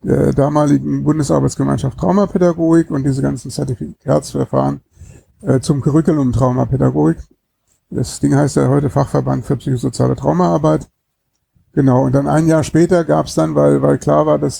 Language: German